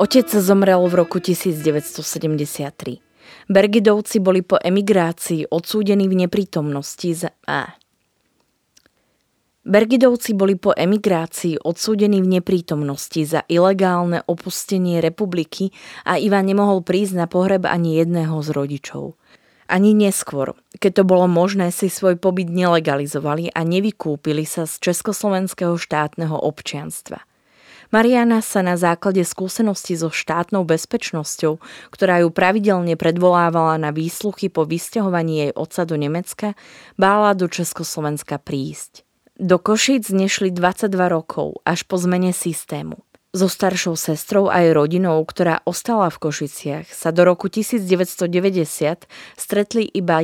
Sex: female